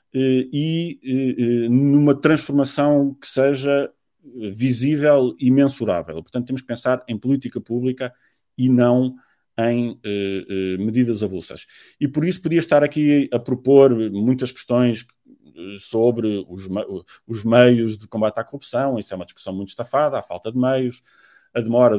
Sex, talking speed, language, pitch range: male, 140 wpm, Portuguese, 110-140 Hz